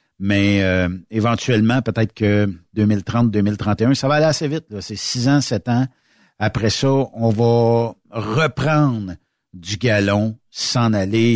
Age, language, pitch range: 60-79, French, 95-130 Hz